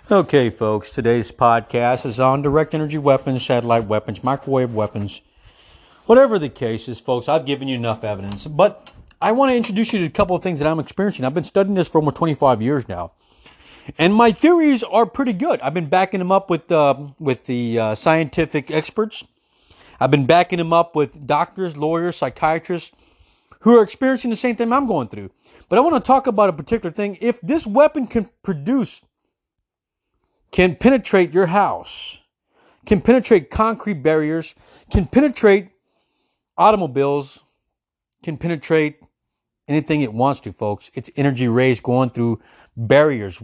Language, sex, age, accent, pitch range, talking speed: English, male, 40-59, American, 125-200 Hz, 165 wpm